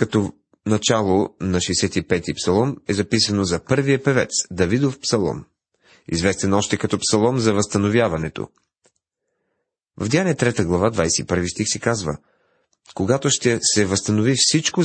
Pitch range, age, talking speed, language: 95-130 Hz, 30-49, 125 wpm, Bulgarian